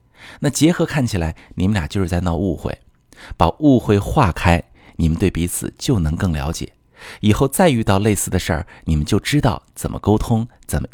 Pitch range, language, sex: 80-115 Hz, Chinese, male